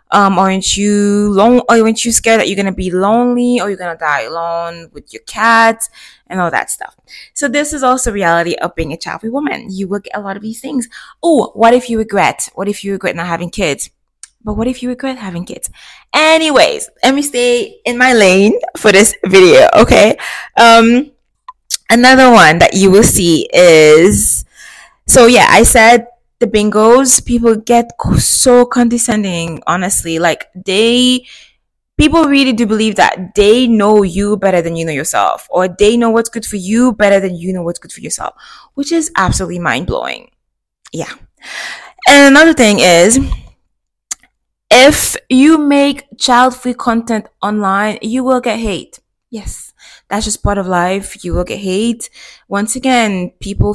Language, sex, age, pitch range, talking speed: English, female, 20-39, 185-245 Hz, 170 wpm